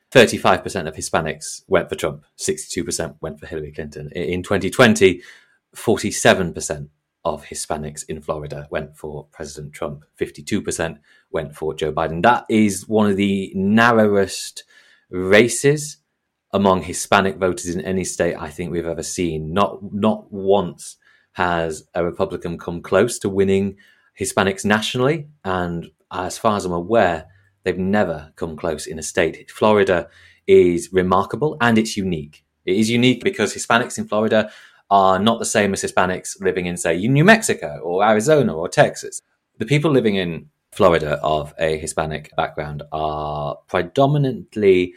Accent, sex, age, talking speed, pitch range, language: British, male, 30-49, 145 wpm, 85-115 Hz, English